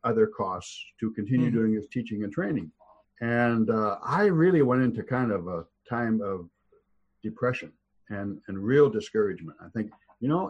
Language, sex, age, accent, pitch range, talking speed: English, male, 60-79, American, 110-145 Hz, 165 wpm